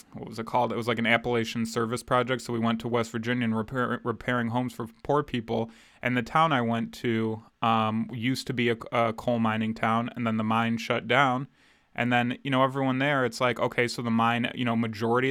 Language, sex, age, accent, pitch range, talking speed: English, male, 20-39, American, 115-125 Hz, 235 wpm